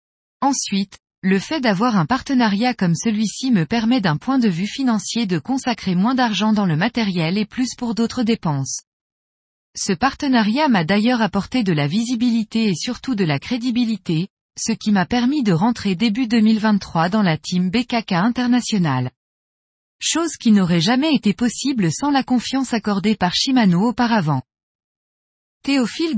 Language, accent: French, French